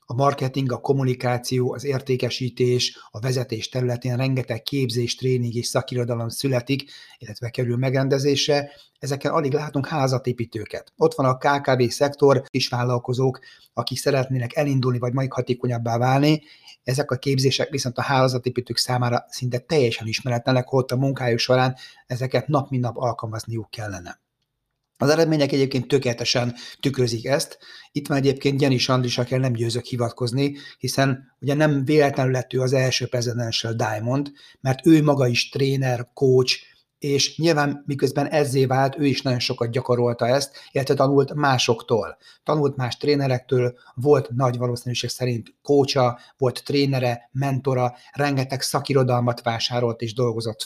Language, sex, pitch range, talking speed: Hungarian, male, 125-140 Hz, 140 wpm